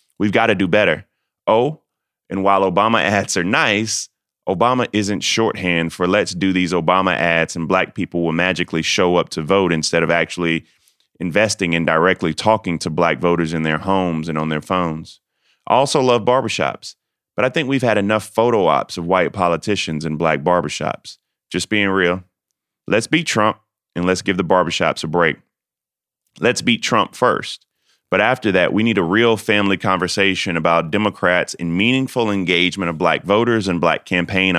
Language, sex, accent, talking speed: English, male, American, 175 wpm